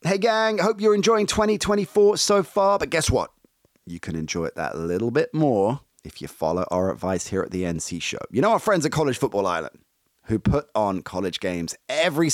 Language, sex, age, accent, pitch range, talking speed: English, male, 30-49, British, 90-145 Hz, 215 wpm